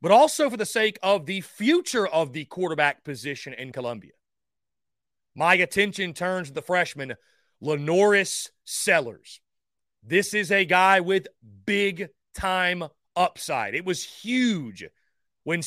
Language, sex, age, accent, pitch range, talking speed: English, male, 30-49, American, 170-225 Hz, 125 wpm